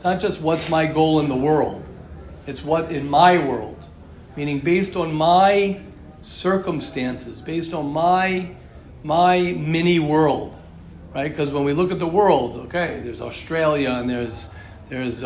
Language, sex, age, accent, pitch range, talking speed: English, male, 50-69, American, 135-175 Hz, 155 wpm